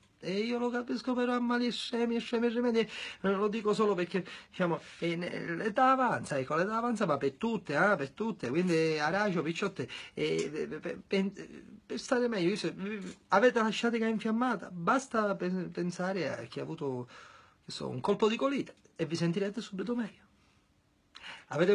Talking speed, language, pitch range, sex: 170 wpm, Italian, 170-240 Hz, male